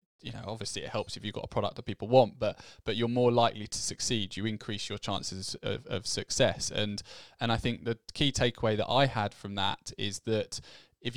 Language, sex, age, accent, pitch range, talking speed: English, male, 20-39, British, 100-120 Hz, 225 wpm